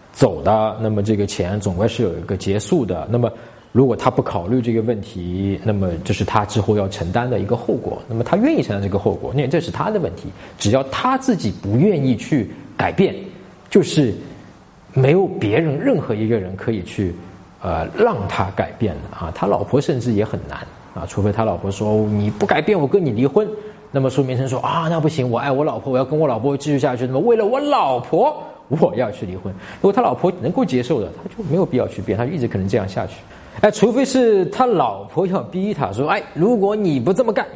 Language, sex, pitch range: Chinese, male, 105-150 Hz